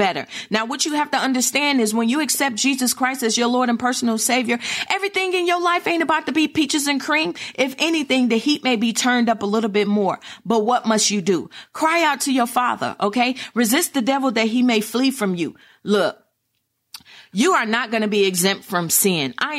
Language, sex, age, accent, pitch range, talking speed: English, female, 40-59, American, 195-260 Hz, 220 wpm